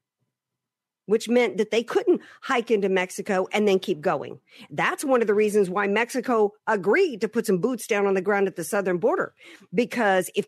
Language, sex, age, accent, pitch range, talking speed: English, female, 50-69, American, 185-230 Hz, 195 wpm